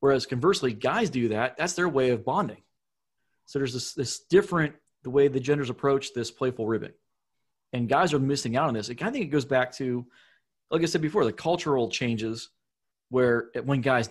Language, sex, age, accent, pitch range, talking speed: English, male, 30-49, American, 115-140 Hz, 195 wpm